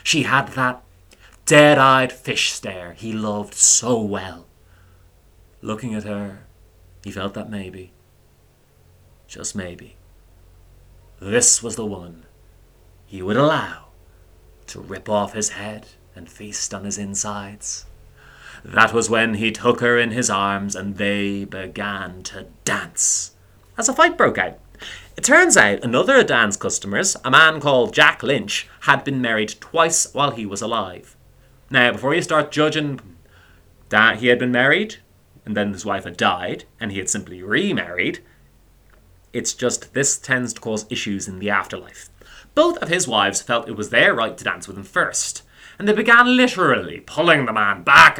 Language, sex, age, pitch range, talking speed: English, male, 30-49, 90-120 Hz, 160 wpm